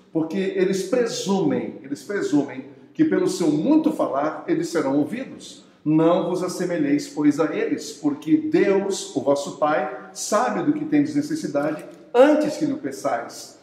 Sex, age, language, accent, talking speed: male, 60-79, Portuguese, Brazilian, 150 wpm